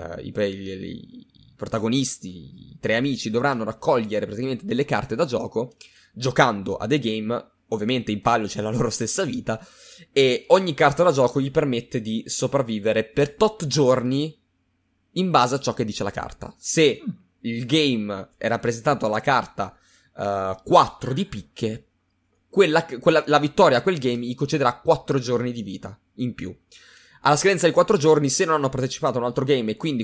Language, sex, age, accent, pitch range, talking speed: Italian, male, 20-39, native, 115-150 Hz, 175 wpm